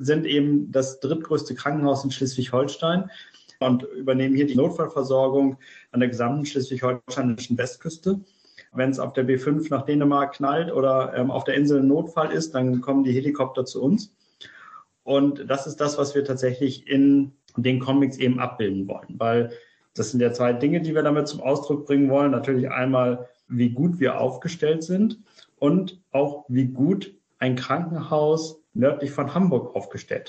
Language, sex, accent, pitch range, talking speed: German, male, German, 130-150 Hz, 160 wpm